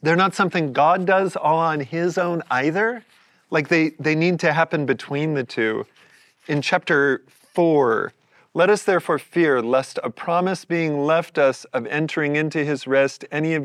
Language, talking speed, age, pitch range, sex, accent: English, 170 wpm, 30-49, 150-185 Hz, male, American